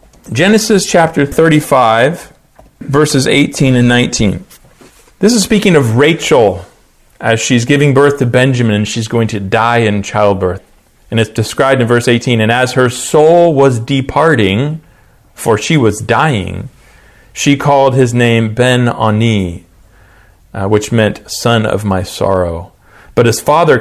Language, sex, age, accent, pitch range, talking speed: English, male, 40-59, American, 100-130 Hz, 145 wpm